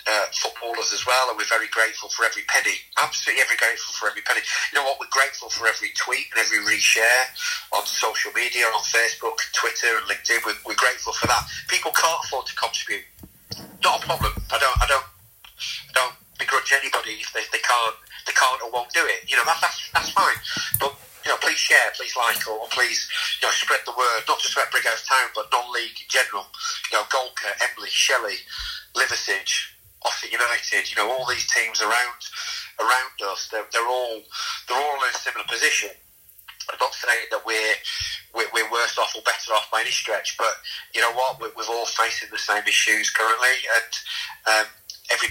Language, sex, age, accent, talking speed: English, male, 40-59, British, 200 wpm